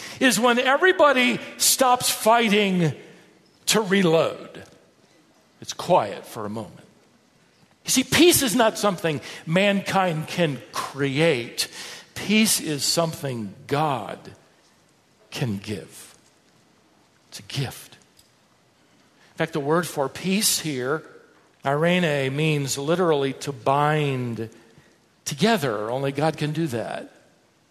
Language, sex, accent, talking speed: English, male, American, 105 wpm